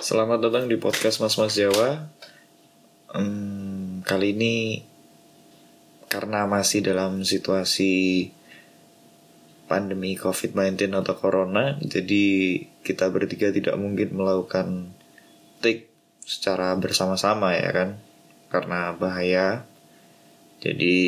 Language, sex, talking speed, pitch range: Indonesian, male, 90 wpm, 95-105 Hz